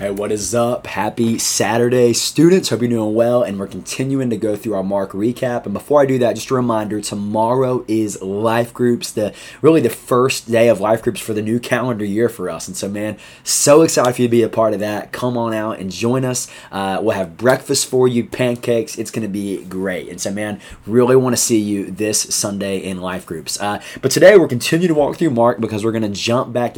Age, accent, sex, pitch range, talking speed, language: 20-39, American, male, 100-125 Hz, 235 wpm, English